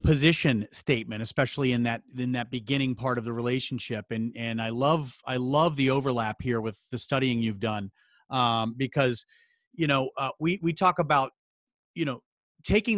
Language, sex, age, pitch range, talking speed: English, male, 30-49, 120-150 Hz, 175 wpm